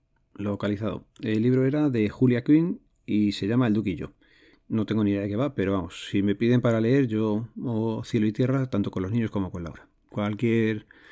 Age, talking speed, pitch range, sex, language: 40-59, 215 wpm, 100-120 Hz, male, Spanish